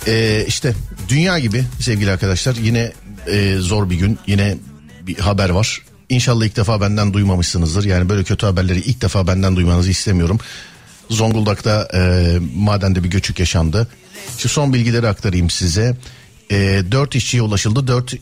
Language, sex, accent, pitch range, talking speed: Turkish, male, native, 90-120 Hz, 150 wpm